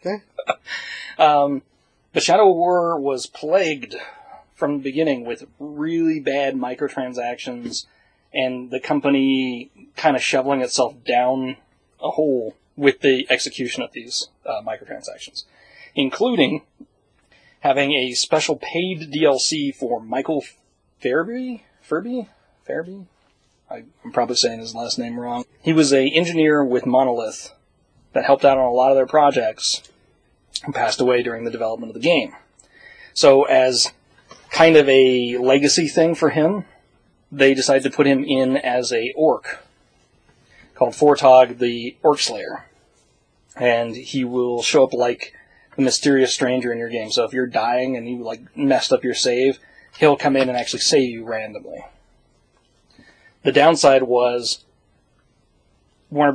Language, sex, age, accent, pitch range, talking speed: English, male, 30-49, American, 125-145 Hz, 140 wpm